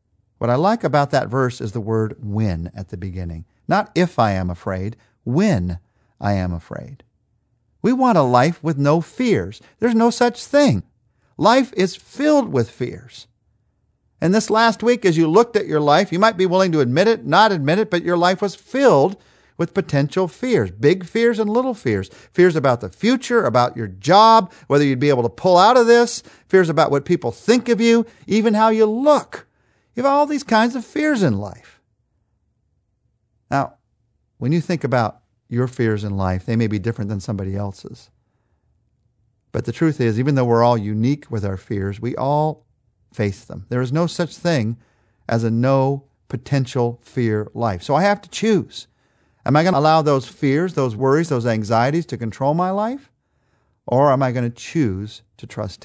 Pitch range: 110-185 Hz